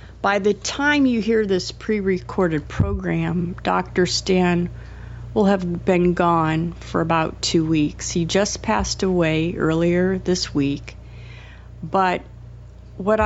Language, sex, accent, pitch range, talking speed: English, female, American, 150-185 Hz, 120 wpm